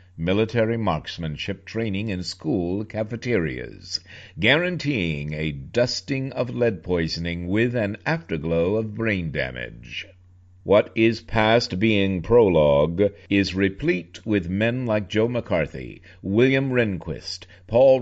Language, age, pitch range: English, 60-79, 90-110 Hz